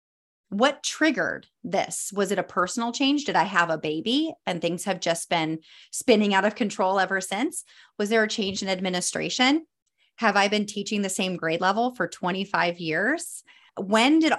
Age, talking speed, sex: 30-49, 180 wpm, female